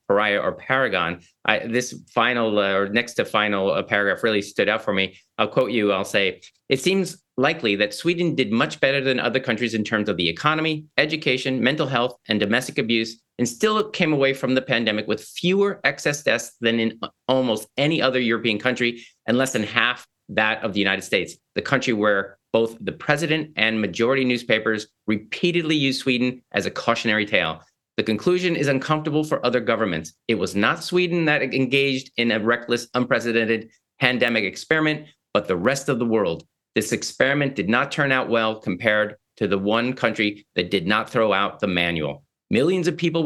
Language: English